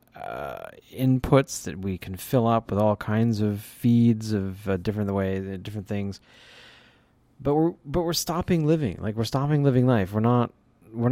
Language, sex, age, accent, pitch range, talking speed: English, male, 30-49, American, 100-125 Hz, 180 wpm